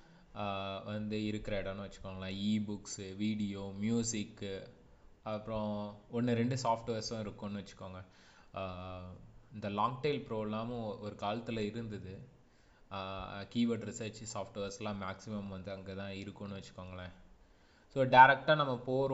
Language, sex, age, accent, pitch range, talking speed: English, male, 20-39, Indian, 100-115 Hz, 80 wpm